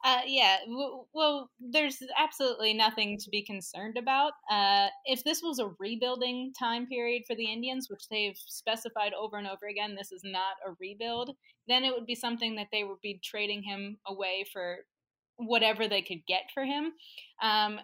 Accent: American